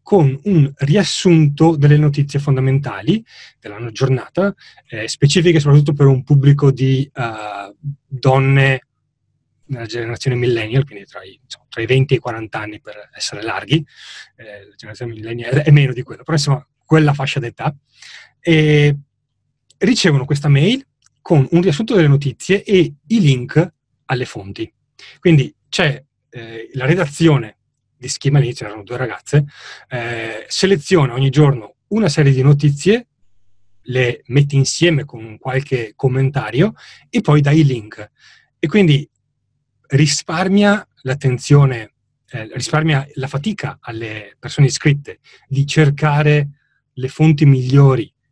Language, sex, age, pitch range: Italian, male, 30-49, 125-155 Hz